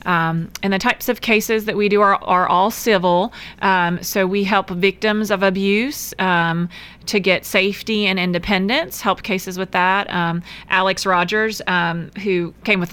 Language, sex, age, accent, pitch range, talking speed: English, female, 30-49, American, 175-210 Hz, 170 wpm